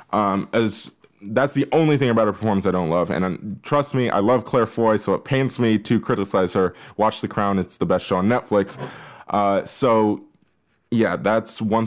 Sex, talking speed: male, 205 wpm